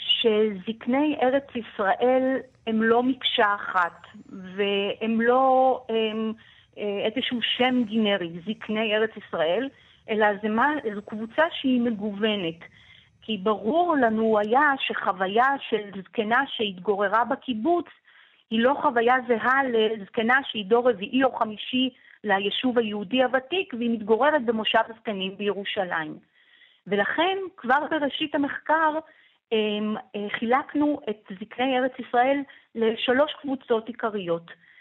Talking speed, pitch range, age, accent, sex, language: 100 wpm, 210-260 Hz, 40-59, native, female, Hebrew